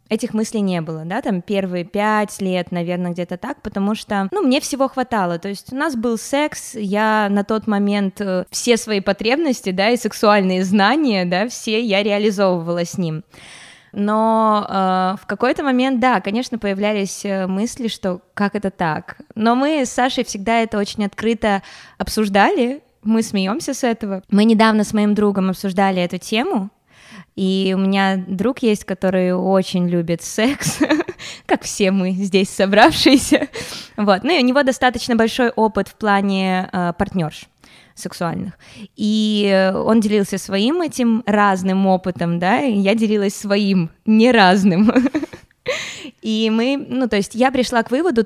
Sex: female